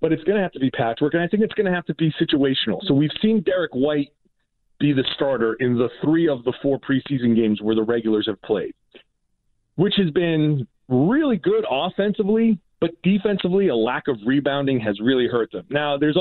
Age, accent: 40-59, American